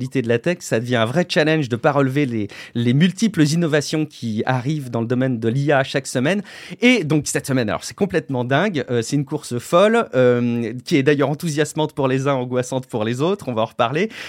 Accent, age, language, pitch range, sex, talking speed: French, 30-49, French, 120-155 Hz, male, 225 wpm